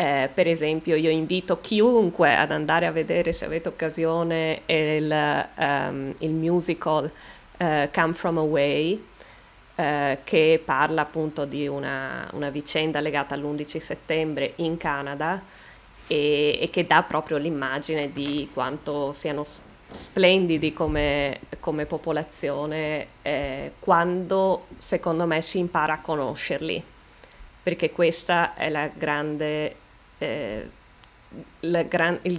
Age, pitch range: 20-39, 150-175 Hz